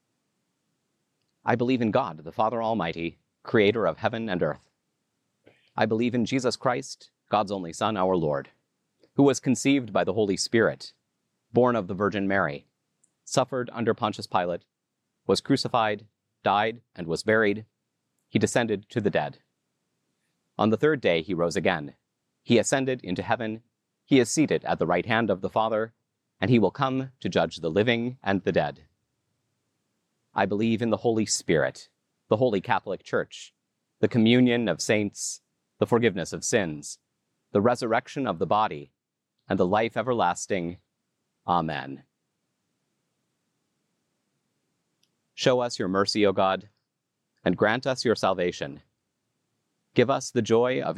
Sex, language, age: male, English, 30-49